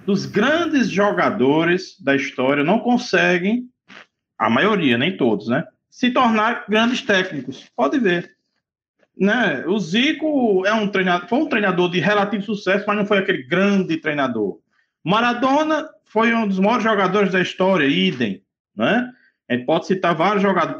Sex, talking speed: male, 145 wpm